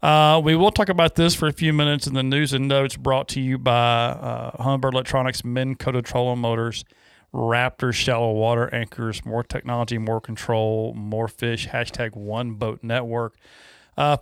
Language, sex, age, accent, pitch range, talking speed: English, male, 40-59, American, 120-160 Hz, 175 wpm